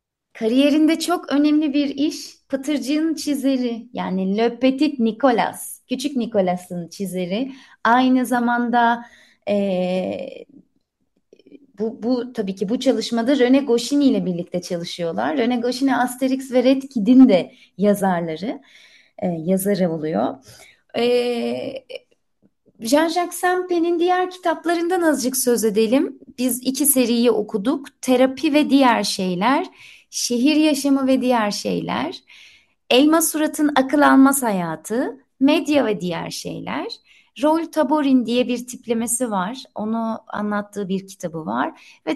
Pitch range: 220-285 Hz